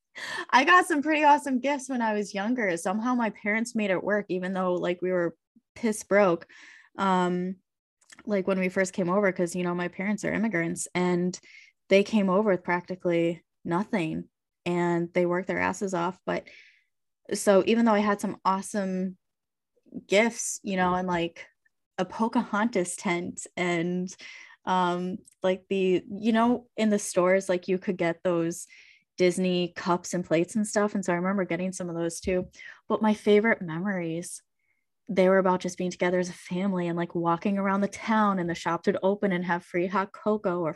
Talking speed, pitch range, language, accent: 185 wpm, 175-215 Hz, English, American